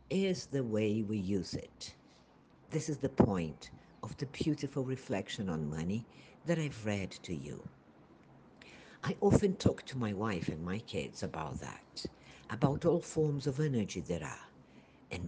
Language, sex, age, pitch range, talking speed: Portuguese, female, 60-79, 100-160 Hz, 155 wpm